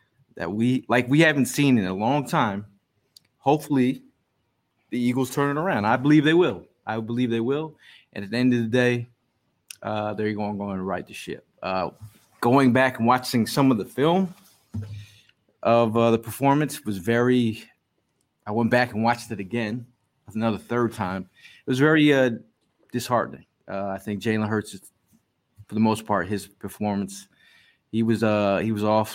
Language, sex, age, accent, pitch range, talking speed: English, male, 30-49, American, 100-125 Hz, 180 wpm